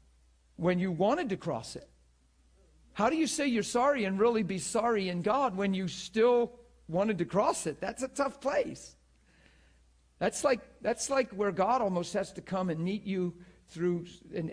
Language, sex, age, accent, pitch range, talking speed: English, male, 50-69, American, 140-180 Hz, 180 wpm